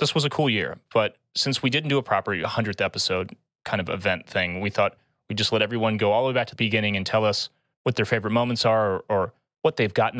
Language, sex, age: English, male, 30-49